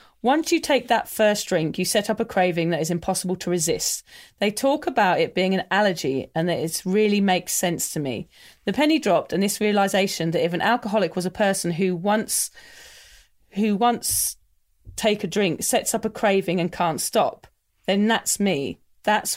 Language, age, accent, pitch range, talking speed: English, 40-59, British, 175-225 Hz, 190 wpm